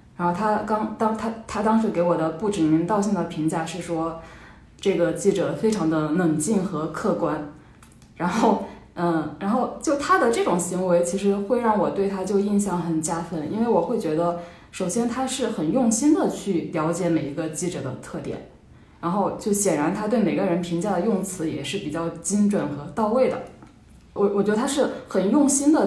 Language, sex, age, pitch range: Chinese, female, 10-29, 165-215 Hz